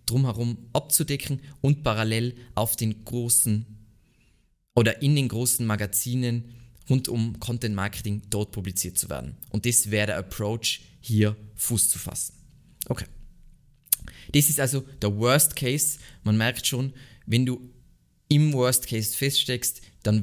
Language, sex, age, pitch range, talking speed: German, male, 20-39, 100-120 Hz, 135 wpm